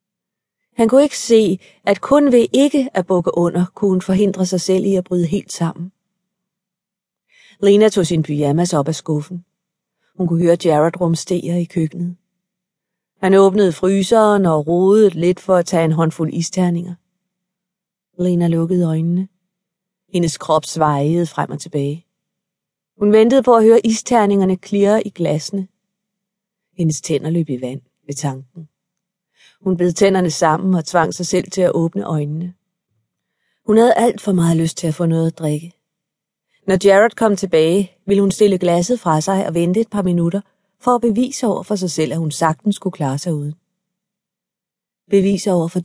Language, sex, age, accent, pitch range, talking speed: Danish, female, 30-49, native, 170-200 Hz, 170 wpm